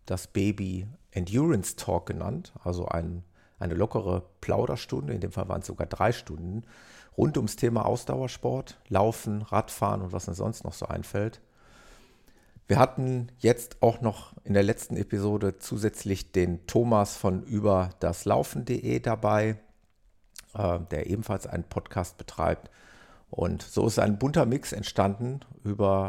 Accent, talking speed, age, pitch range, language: German, 135 wpm, 50-69, 90-110 Hz, German